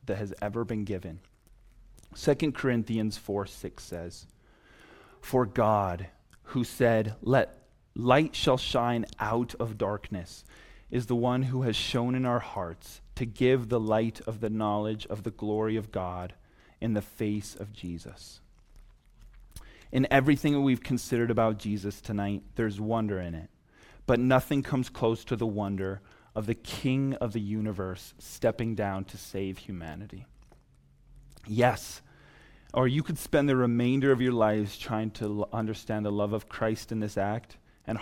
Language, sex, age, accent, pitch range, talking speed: English, male, 30-49, American, 100-125 Hz, 155 wpm